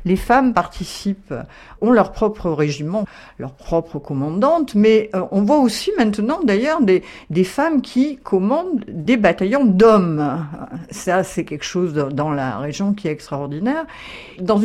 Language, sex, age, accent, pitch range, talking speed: French, female, 50-69, French, 155-225 Hz, 145 wpm